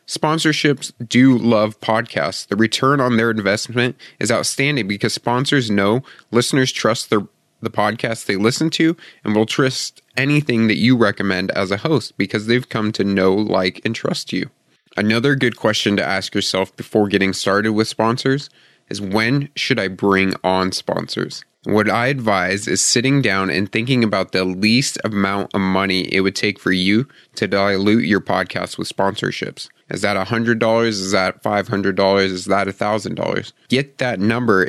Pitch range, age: 100-120 Hz, 20-39